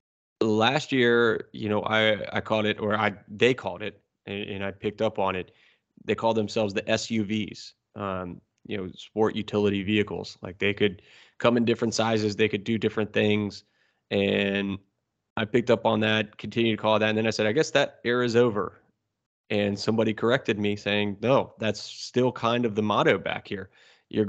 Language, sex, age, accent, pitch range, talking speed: English, male, 20-39, American, 105-115 Hz, 195 wpm